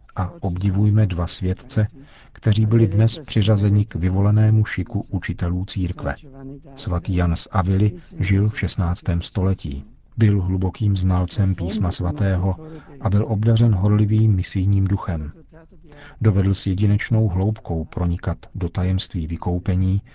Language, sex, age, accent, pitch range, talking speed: Czech, male, 40-59, native, 95-110 Hz, 120 wpm